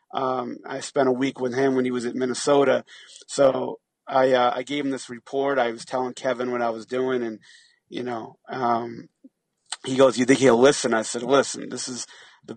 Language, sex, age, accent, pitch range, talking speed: English, male, 30-49, American, 120-130 Hz, 210 wpm